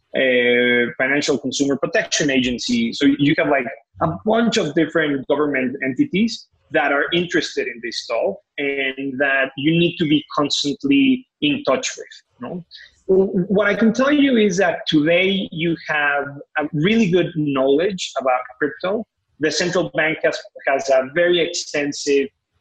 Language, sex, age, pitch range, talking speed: English, male, 30-49, 130-165 Hz, 145 wpm